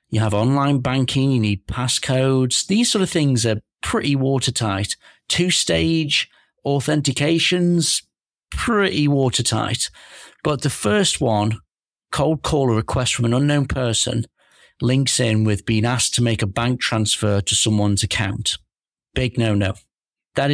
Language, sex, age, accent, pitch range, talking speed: English, male, 40-59, British, 110-135 Hz, 135 wpm